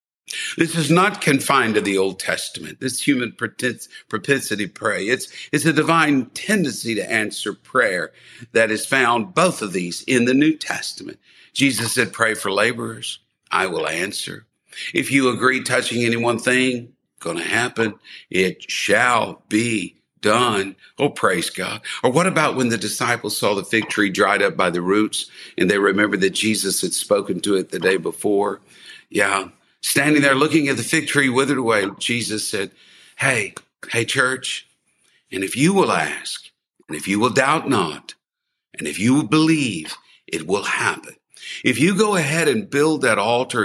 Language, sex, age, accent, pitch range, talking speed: English, male, 60-79, American, 105-145 Hz, 170 wpm